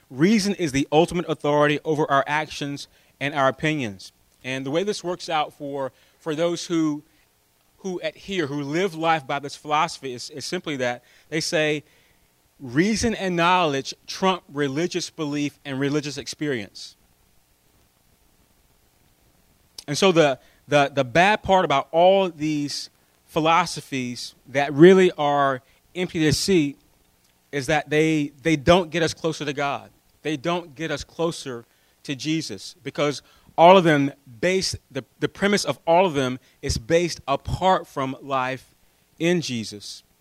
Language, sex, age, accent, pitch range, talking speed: English, male, 30-49, American, 125-165 Hz, 145 wpm